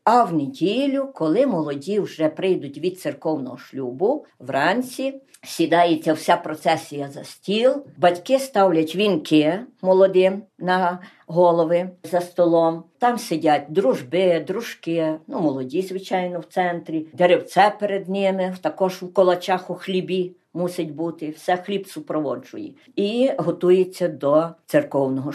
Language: Ukrainian